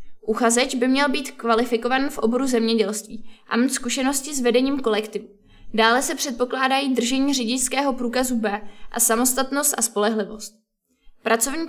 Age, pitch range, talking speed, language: 20-39, 220-260 Hz, 135 wpm, Czech